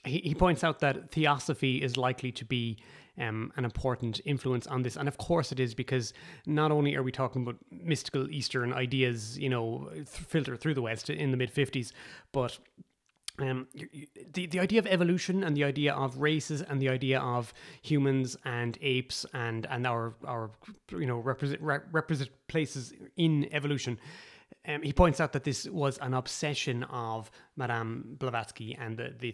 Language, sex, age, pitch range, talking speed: English, male, 30-49, 125-150 Hz, 180 wpm